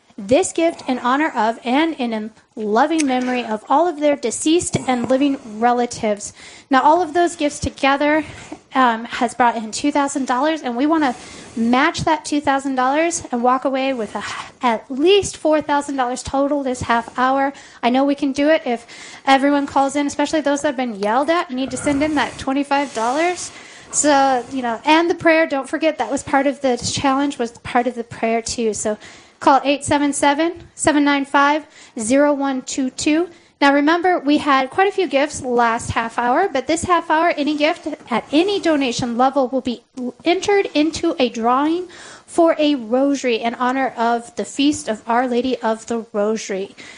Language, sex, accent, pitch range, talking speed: English, female, American, 245-300 Hz, 170 wpm